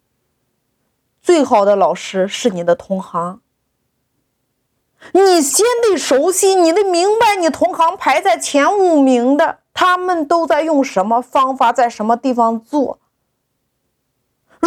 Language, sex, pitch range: Chinese, female, 235-365 Hz